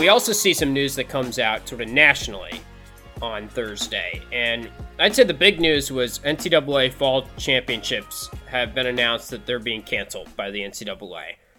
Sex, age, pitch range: male, 20-39, 130-165 Hz